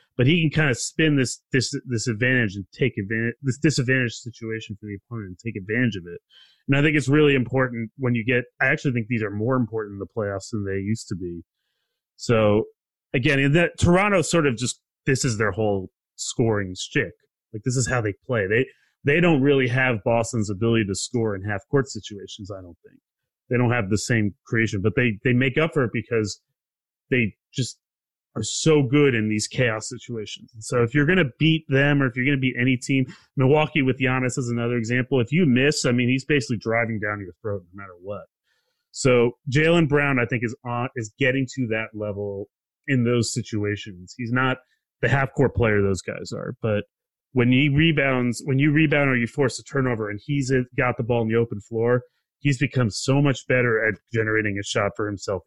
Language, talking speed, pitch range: English, 215 wpm, 110-135 Hz